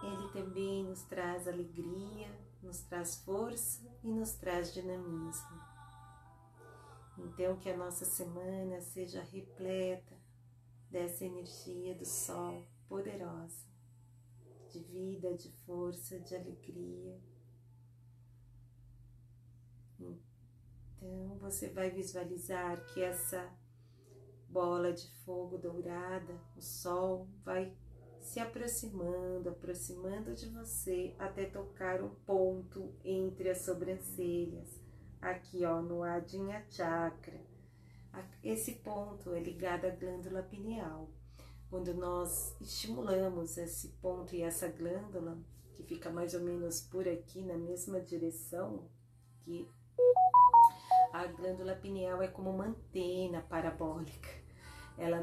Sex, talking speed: female, 105 wpm